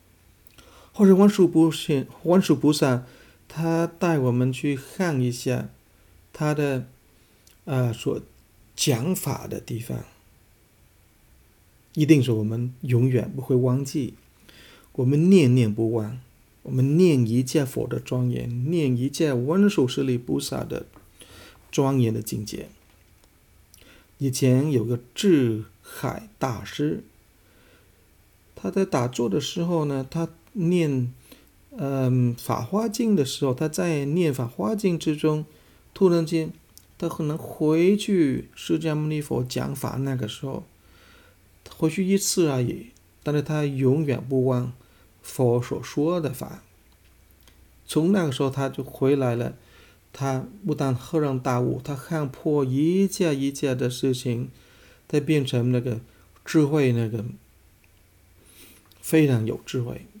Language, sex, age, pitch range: English, male, 50-69, 115-155 Hz